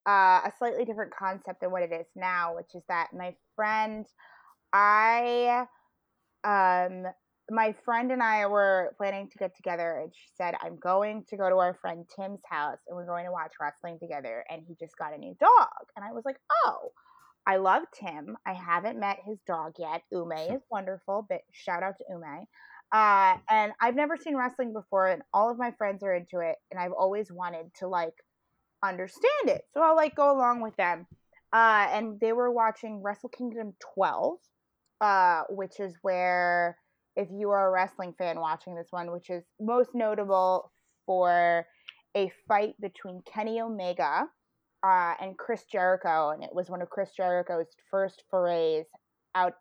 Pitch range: 180-225 Hz